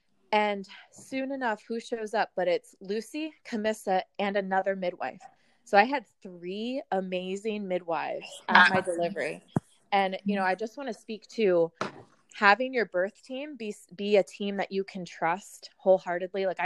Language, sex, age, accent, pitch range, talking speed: English, female, 20-39, American, 175-205 Hz, 160 wpm